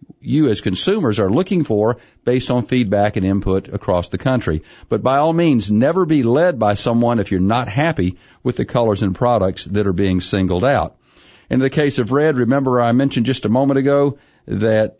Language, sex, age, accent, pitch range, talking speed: English, male, 50-69, American, 105-135 Hz, 200 wpm